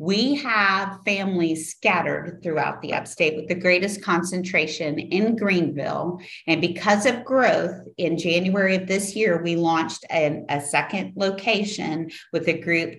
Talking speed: 145 wpm